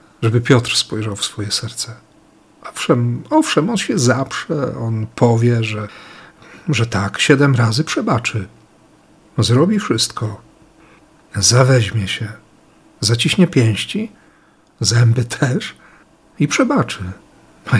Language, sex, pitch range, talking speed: Polish, male, 110-135 Hz, 100 wpm